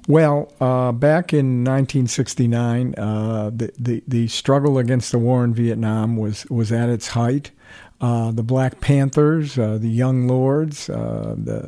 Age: 50-69